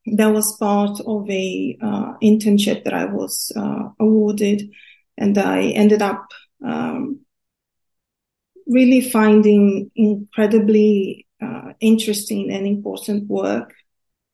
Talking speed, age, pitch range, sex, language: 105 wpm, 30-49, 200-220 Hz, female, English